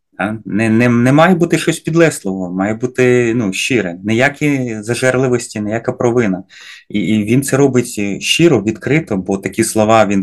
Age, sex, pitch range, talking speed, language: 30-49, male, 95-130 Hz, 155 wpm, Ukrainian